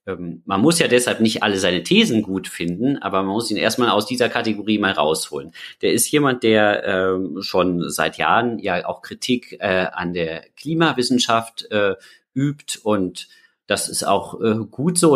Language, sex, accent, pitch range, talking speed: German, male, German, 105-135 Hz, 175 wpm